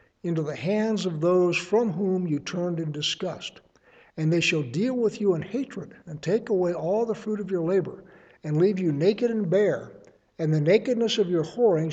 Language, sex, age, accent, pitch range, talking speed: English, male, 60-79, American, 150-195 Hz, 200 wpm